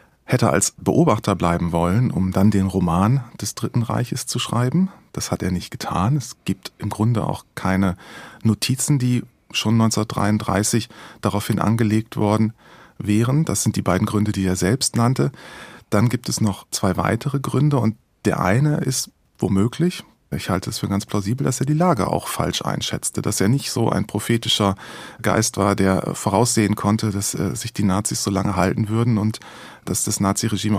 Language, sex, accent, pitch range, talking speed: German, male, German, 100-125 Hz, 175 wpm